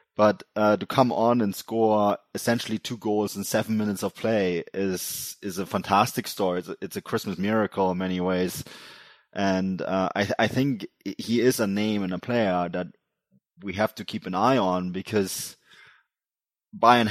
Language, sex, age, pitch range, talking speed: English, male, 20-39, 95-105 Hz, 175 wpm